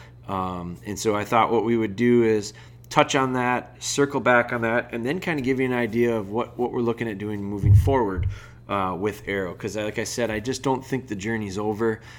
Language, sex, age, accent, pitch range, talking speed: English, male, 20-39, American, 100-120 Hz, 235 wpm